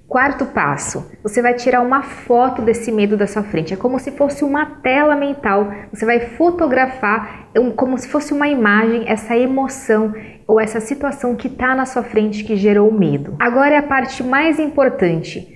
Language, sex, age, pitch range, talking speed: Portuguese, female, 20-39, 215-265 Hz, 175 wpm